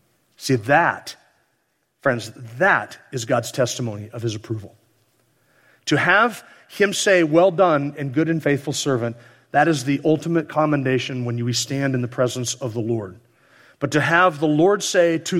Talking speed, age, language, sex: 165 wpm, 40-59, English, male